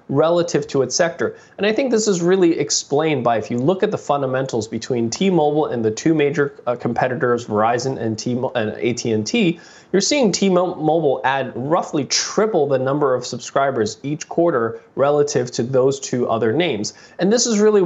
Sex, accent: male, American